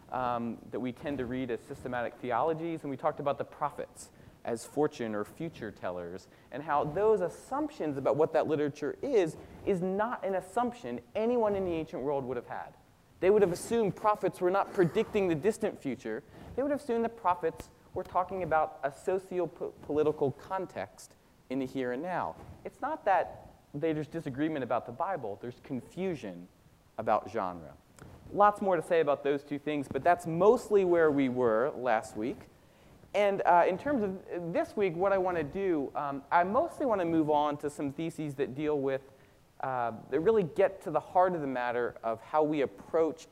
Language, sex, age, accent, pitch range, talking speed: English, male, 30-49, American, 135-185 Hz, 190 wpm